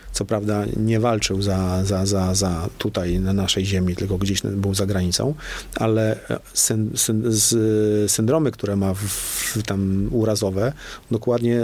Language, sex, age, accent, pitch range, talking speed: Polish, male, 40-59, native, 100-110 Hz, 150 wpm